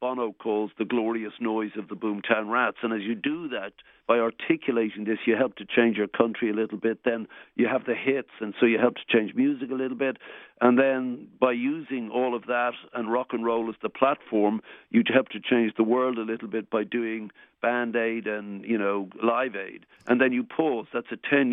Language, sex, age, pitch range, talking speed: English, male, 60-79, 110-130 Hz, 220 wpm